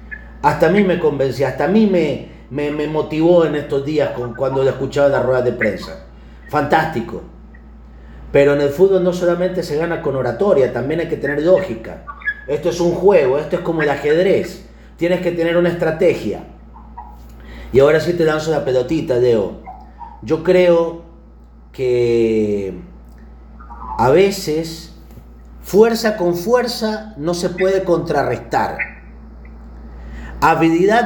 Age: 40-59